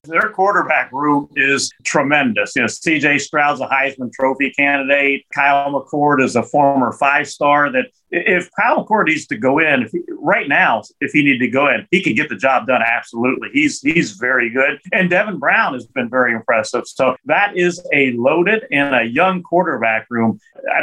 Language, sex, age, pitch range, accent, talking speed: English, male, 40-59, 130-175 Hz, American, 195 wpm